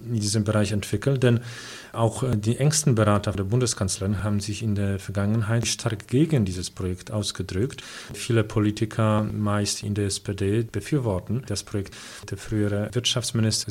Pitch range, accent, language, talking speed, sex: 105-125 Hz, German, English, 145 wpm, male